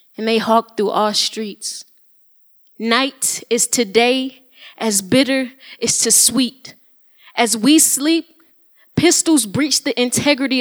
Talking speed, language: 120 wpm, English